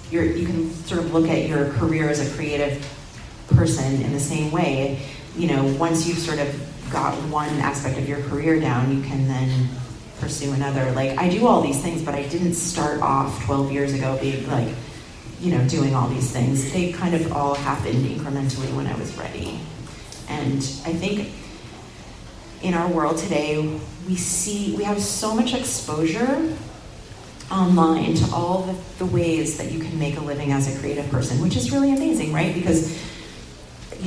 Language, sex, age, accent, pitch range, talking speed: English, female, 30-49, American, 135-170 Hz, 180 wpm